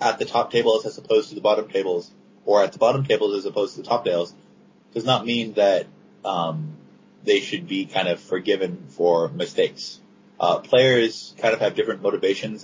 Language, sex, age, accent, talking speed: English, male, 30-49, American, 195 wpm